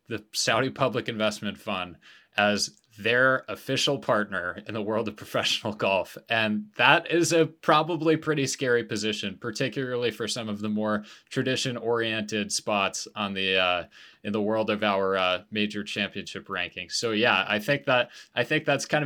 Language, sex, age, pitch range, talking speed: English, male, 20-39, 100-120 Hz, 165 wpm